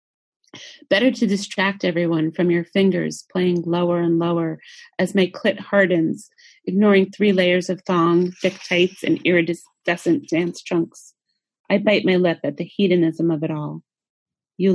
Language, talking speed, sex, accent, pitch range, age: English, 150 wpm, female, American, 165-195 Hz, 30-49